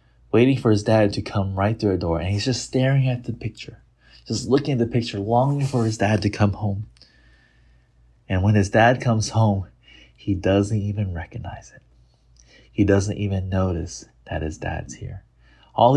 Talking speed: 185 wpm